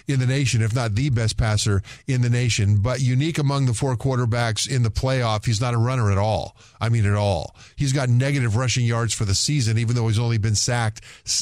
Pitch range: 110-135 Hz